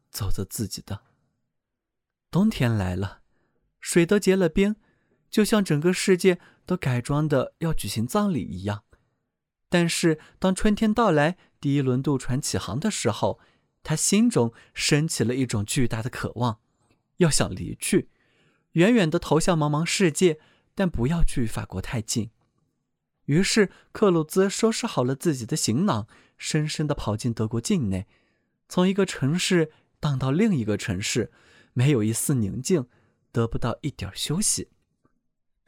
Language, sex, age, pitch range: Chinese, male, 20-39, 115-175 Hz